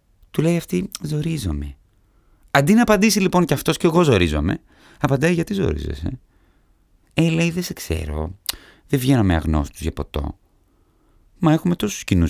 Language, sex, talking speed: Greek, male, 150 wpm